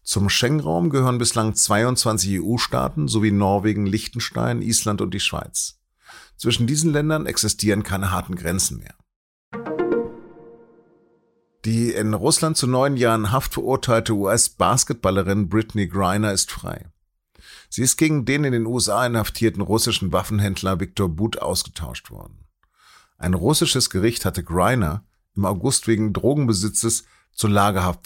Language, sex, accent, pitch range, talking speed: German, male, German, 100-120 Hz, 125 wpm